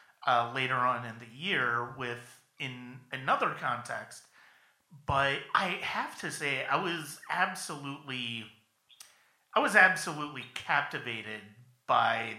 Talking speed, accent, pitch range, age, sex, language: 110 wpm, American, 120-150 Hz, 40-59, male, English